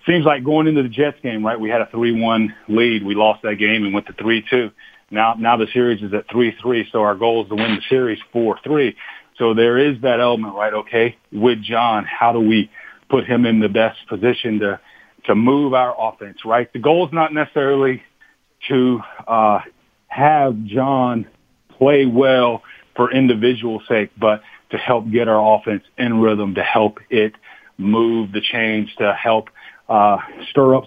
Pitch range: 105-125 Hz